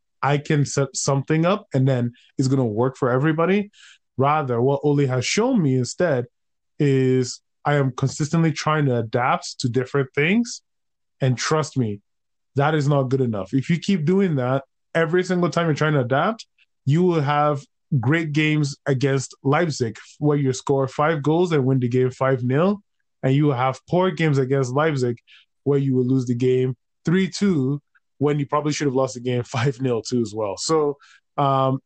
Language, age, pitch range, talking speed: English, 20-39, 130-170 Hz, 185 wpm